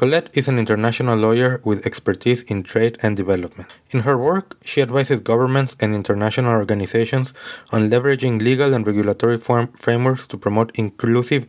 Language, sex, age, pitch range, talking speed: English, male, 20-39, 105-125 Hz, 150 wpm